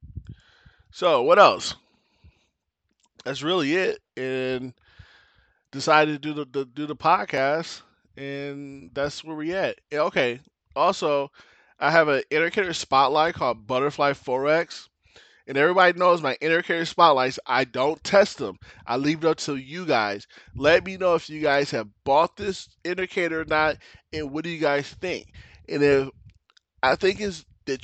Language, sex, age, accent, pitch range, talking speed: English, male, 20-39, American, 130-165 Hz, 155 wpm